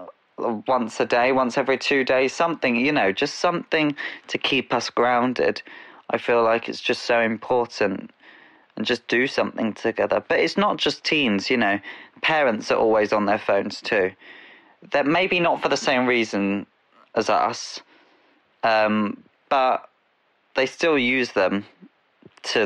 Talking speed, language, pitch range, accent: 155 wpm, English, 105-130 Hz, British